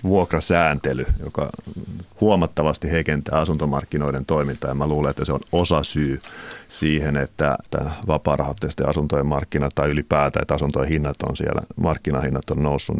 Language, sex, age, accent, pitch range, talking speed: Finnish, male, 30-49, native, 80-105 Hz, 140 wpm